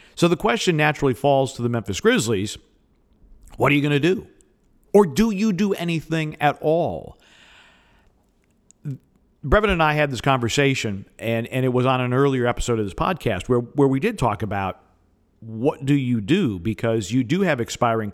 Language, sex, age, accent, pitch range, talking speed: English, male, 50-69, American, 110-140 Hz, 180 wpm